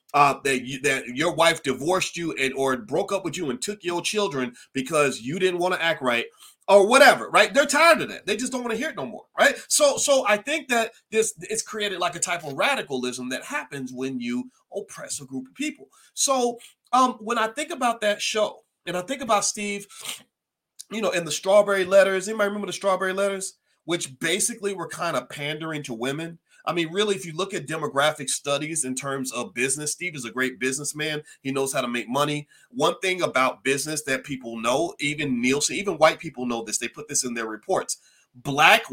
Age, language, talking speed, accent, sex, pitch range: 30-49, English, 215 wpm, American, male, 135-205 Hz